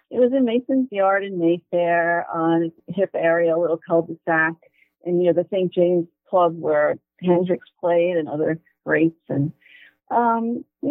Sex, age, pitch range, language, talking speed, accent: female, 50-69, 160-200 Hz, English, 160 wpm, American